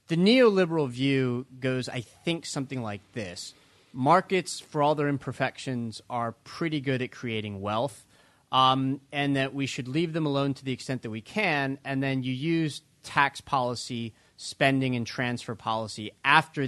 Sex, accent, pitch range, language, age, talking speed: male, American, 115-145 Hz, English, 30-49, 160 wpm